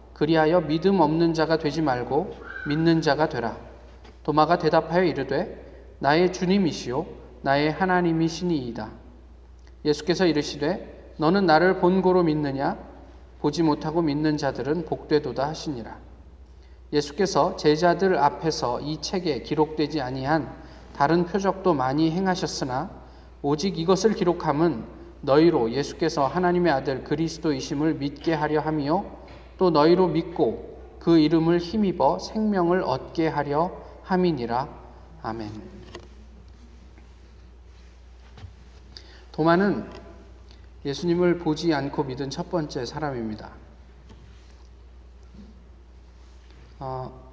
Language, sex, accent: Korean, male, native